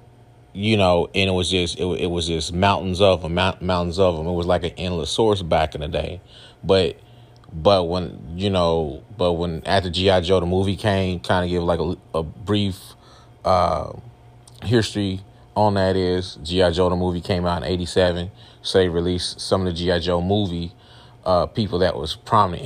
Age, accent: 30-49, American